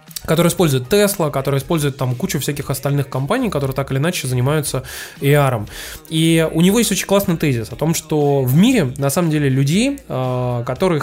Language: Russian